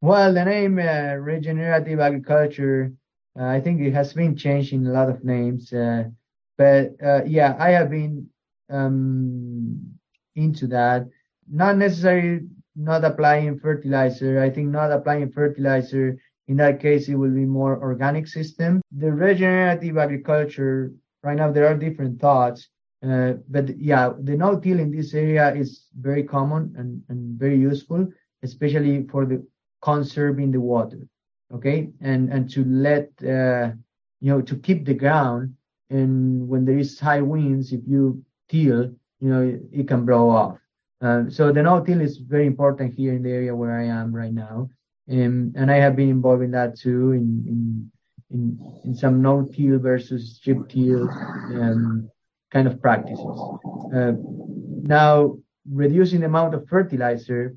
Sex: male